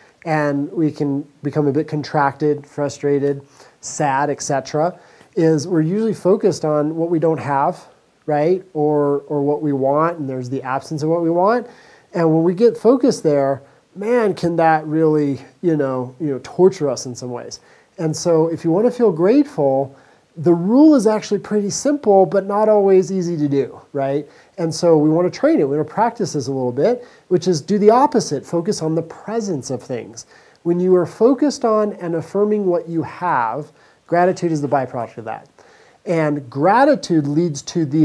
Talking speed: 190 wpm